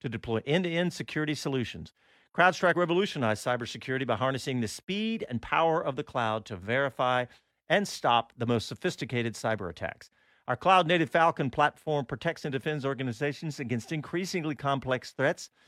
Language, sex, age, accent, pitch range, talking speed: English, male, 50-69, American, 120-170 Hz, 145 wpm